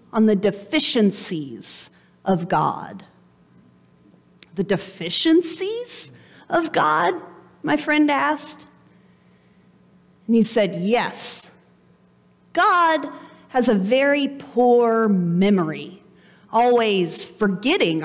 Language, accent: English, American